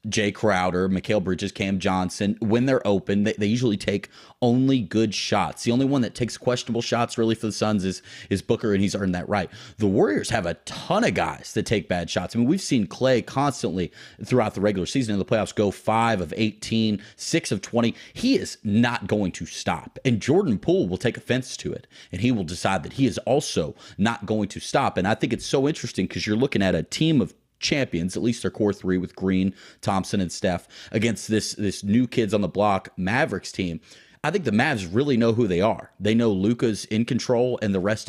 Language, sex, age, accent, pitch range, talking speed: English, male, 30-49, American, 95-120 Hz, 225 wpm